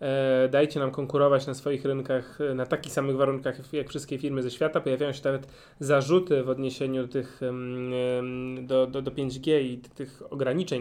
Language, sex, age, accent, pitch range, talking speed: Polish, male, 20-39, native, 130-150 Hz, 165 wpm